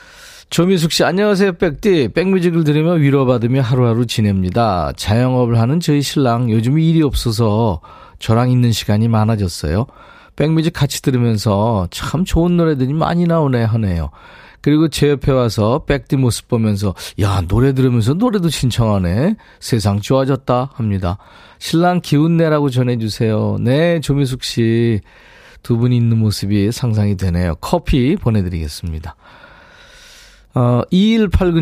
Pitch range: 110-160 Hz